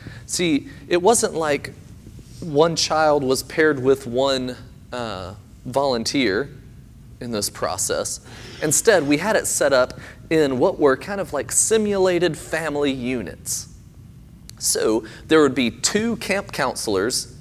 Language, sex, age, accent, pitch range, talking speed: English, male, 30-49, American, 110-135 Hz, 130 wpm